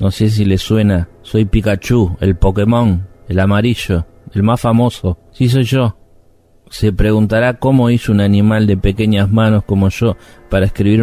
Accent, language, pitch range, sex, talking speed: Argentinian, Spanish, 95-115 Hz, male, 165 wpm